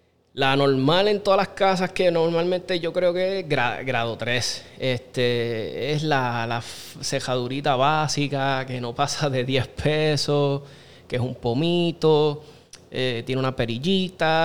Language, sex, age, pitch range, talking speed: Spanish, male, 20-39, 125-150 Hz, 140 wpm